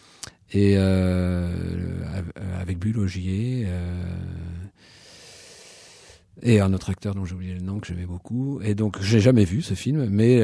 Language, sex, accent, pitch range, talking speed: French, male, French, 95-130 Hz, 150 wpm